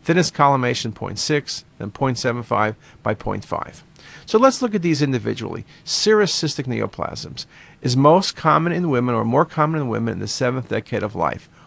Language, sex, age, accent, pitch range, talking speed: English, male, 50-69, American, 115-155 Hz, 165 wpm